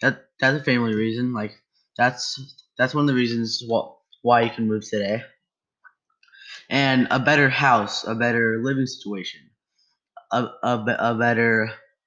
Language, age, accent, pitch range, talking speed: English, 10-29, American, 115-165 Hz, 145 wpm